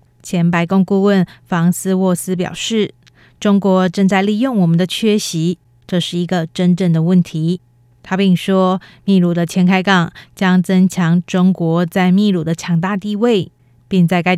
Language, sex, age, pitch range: Chinese, female, 20-39, 170-195 Hz